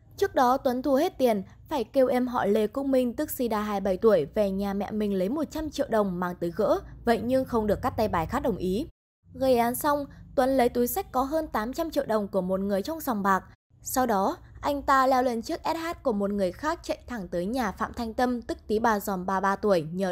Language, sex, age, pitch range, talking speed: English, female, 20-39, 205-275 Hz, 250 wpm